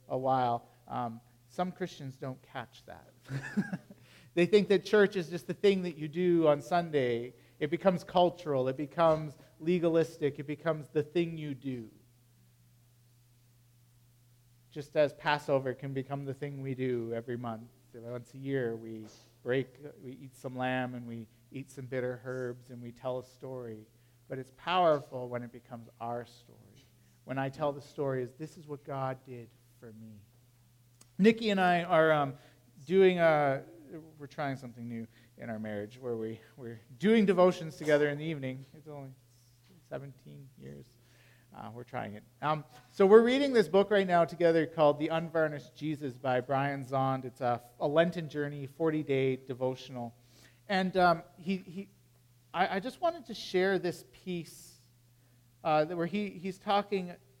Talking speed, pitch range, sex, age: 165 wpm, 120-160 Hz, male, 40-59